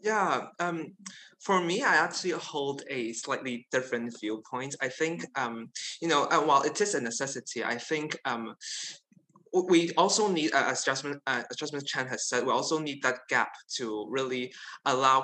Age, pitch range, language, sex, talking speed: 20-39, 125-165 Hz, English, male, 170 wpm